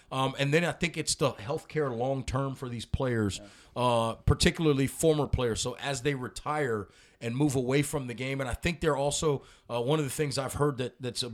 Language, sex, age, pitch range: English, male, 30-49, 115-145 Hz